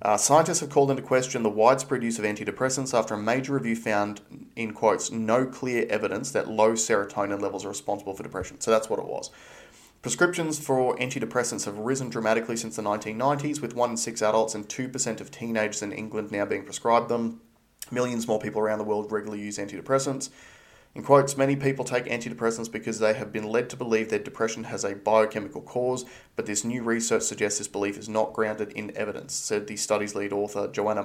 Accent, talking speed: Australian, 200 wpm